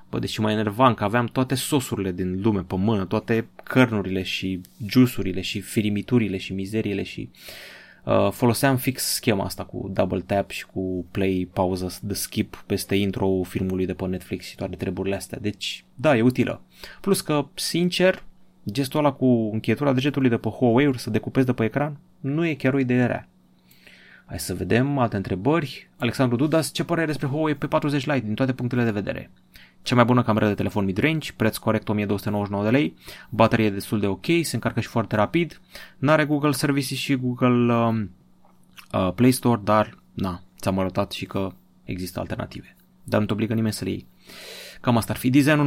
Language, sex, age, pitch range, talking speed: Romanian, male, 20-39, 95-130 Hz, 185 wpm